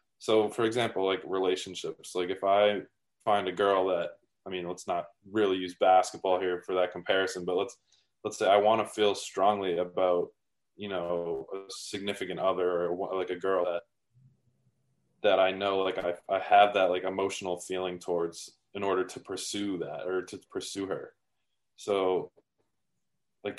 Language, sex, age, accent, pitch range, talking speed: English, male, 20-39, American, 90-100 Hz, 170 wpm